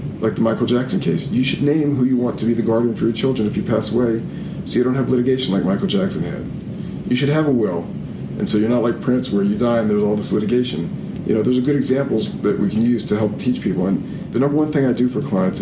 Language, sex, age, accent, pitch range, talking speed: English, male, 50-69, American, 110-140 Hz, 280 wpm